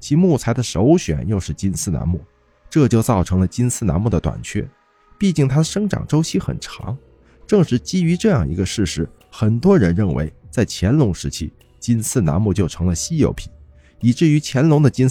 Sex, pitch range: male, 80-135 Hz